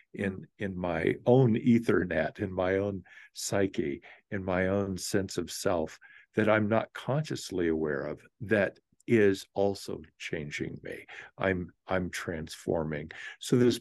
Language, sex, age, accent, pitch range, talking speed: English, male, 50-69, American, 90-115 Hz, 135 wpm